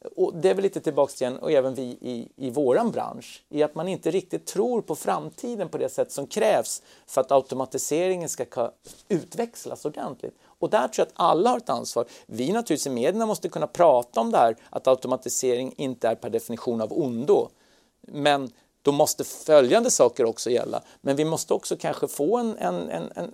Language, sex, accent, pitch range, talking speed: Swedish, male, native, 130-210 Hz, 200 wpm